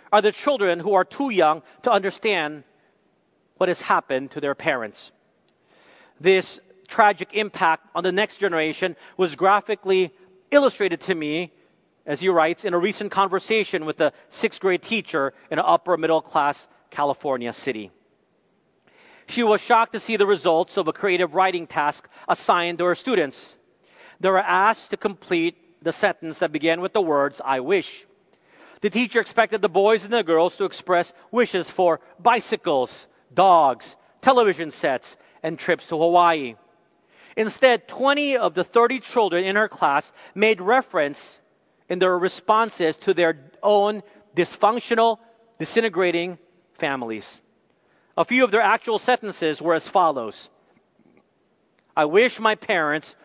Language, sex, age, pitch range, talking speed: English, male, 40-59, 165-215 Hz, 140 wpm